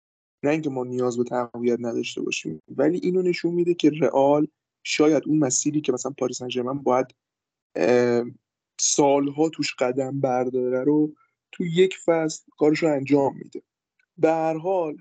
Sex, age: male, 20-39